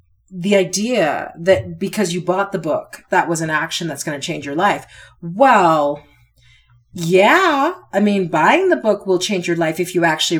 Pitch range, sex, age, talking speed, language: 150-185 Hz, female, 30-49, 185 wpm, English